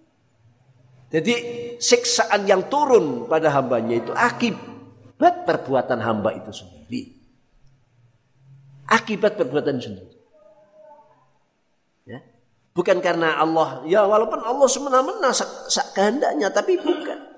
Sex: male